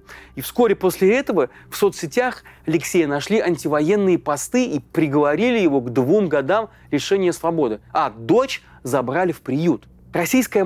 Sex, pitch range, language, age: male, 150-210 Hz, Russian, 30-49